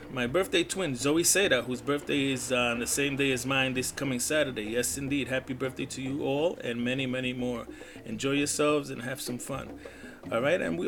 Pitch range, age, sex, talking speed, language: 125-150 Hz, 30-49, male, 210 wpm, English